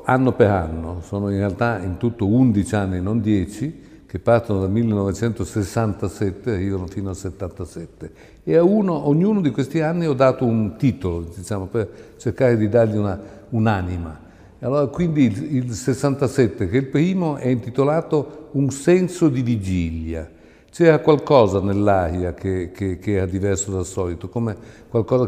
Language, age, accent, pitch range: Italian, 60-79, native, 100-130 Hz